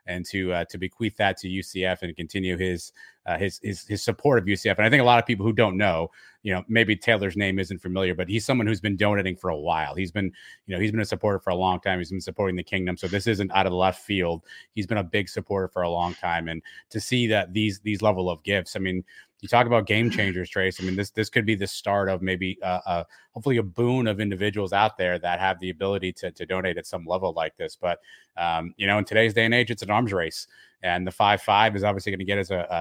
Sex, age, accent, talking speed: male, 30-49, American, 275 wpm